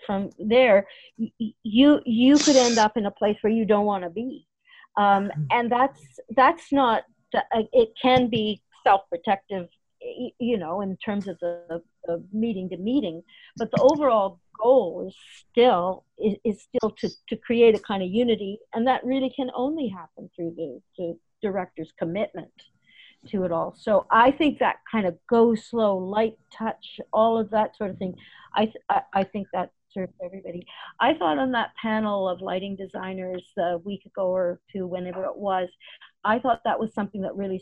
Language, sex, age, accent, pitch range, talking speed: English, female, 50-69, American, 185-230 Hz, 180 wpm